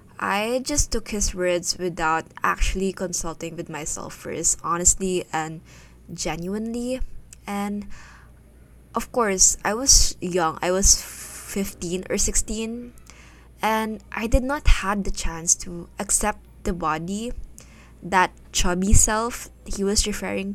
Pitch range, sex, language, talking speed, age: 160-200 Hz, female, English, 125 wpm, 20-39